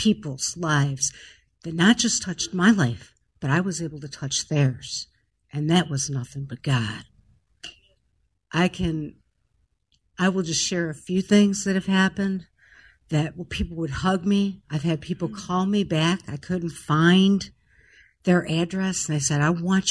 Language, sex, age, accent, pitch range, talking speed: English, female, 60-79, American, 150-190 Hz, 165 wpm